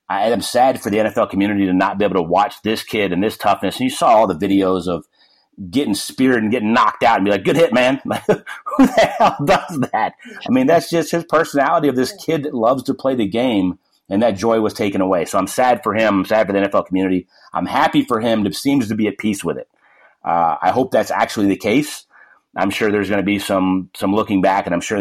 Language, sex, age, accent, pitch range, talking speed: English, male, 30-49, American, 95-120 Hz, 255 wpm